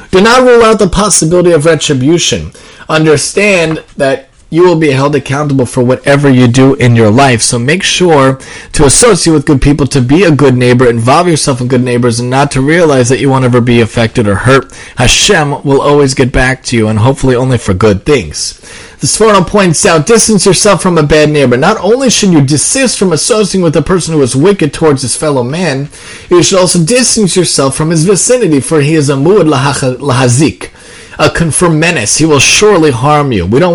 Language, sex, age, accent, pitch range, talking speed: English, male, 30-49, American, 130-175 Hz, 205 wpm